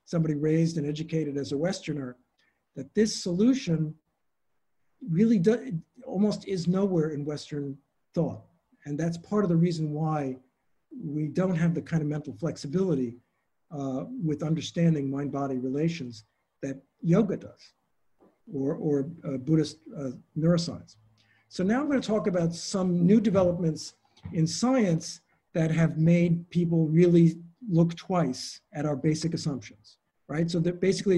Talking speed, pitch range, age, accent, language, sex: 140 wpm, 145-180 Hz, 50-69, American, English, male